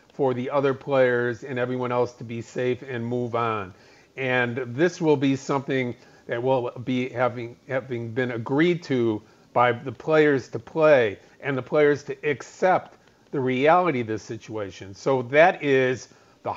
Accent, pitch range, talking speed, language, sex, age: American, 120-145 Hz, 165 wpm, English, male, 50-69